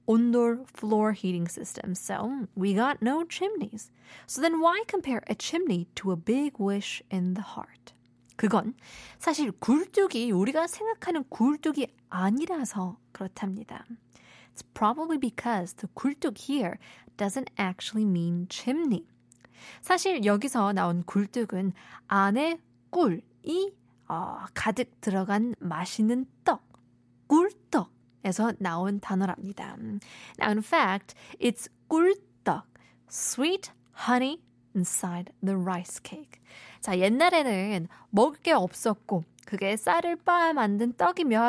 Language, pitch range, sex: Korean, 190-315 Hz, female